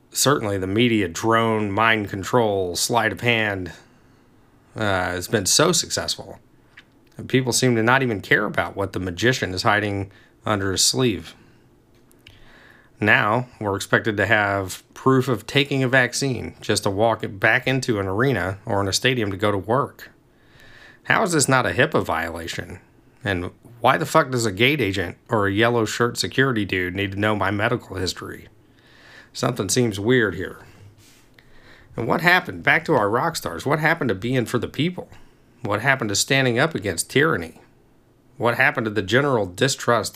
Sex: male